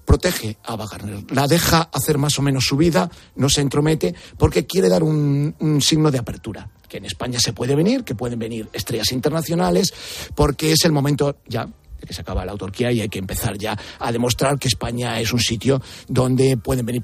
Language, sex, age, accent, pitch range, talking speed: Spanish, male, 40-59, Spanish, 110-145 Hz, 210 wpm